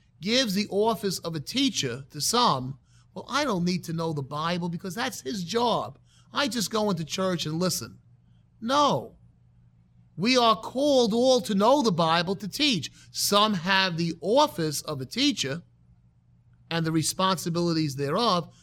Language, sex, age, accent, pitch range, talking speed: English, male, 30-49, American, 140-200 Hz, 160 wpm